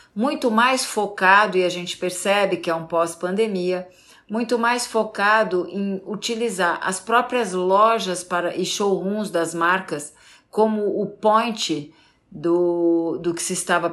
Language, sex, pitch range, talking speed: Portuguese, female, 185-235 Hz, 135 wpm